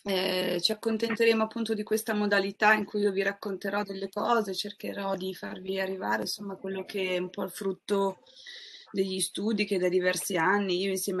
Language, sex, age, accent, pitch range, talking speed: Italian, female, 20-39, native, 175-200 Hz, 180 wpm